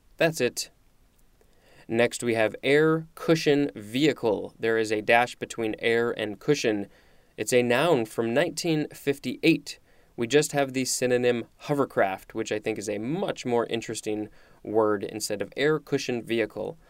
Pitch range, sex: 110-135 Hz, male